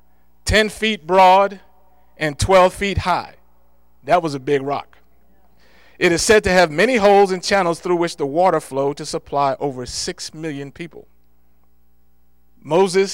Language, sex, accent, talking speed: English, male, American, 150 wpm